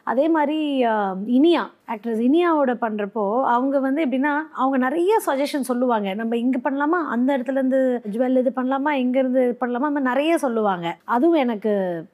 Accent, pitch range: native, 210-275 Hz